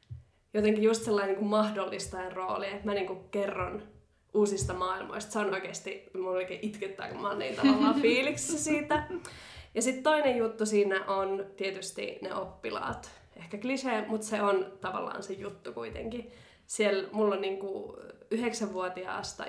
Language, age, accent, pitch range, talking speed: Finnish, 20-39, native, 190-215 Hz, 150 wpm